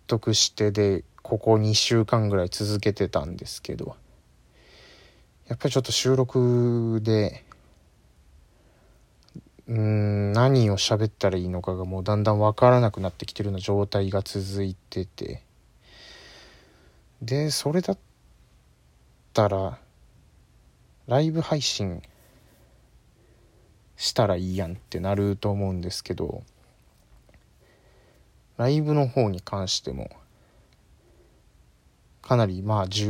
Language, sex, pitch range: Japanese, male, 95-115 Hz